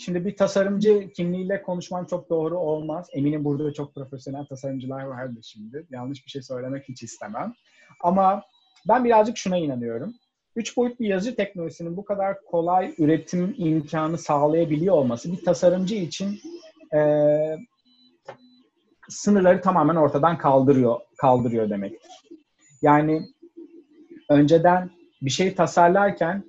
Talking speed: 120 wpm